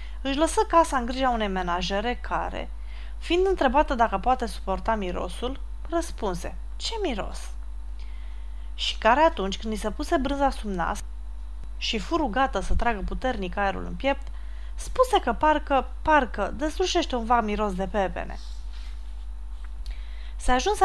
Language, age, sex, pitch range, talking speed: Romanian, 20-39, female, 185-275 Hz, 130 wpm